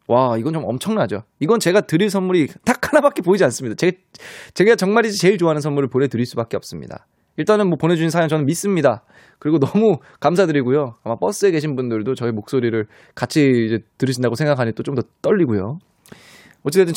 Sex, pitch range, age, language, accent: male, 125-190 Hz, 20-39, Korean, native